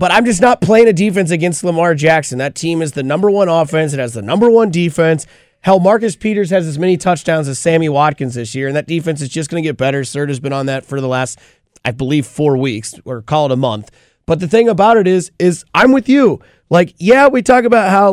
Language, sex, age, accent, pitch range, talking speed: English, male, 30-49, American, 145-195 Hz, 250 wpm